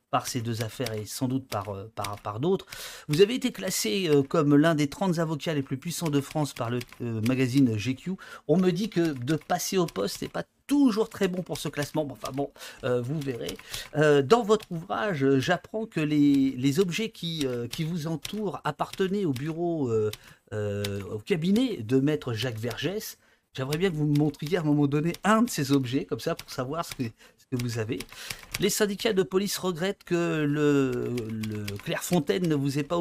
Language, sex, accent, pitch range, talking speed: French, male, French, 130-170 Hz, 205 wpm